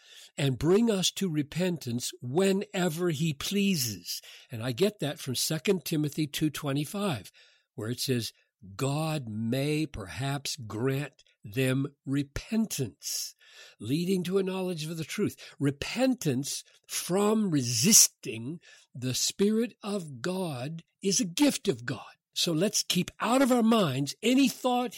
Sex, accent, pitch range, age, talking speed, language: male, American, 125-180 Hz, 60-79, 125 wpm, English